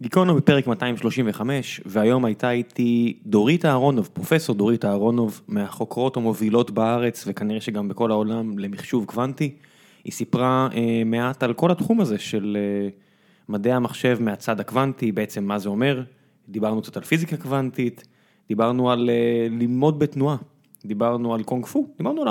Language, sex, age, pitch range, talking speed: Hebrew, male, 20-39, 115-160 Hz, 145 wpm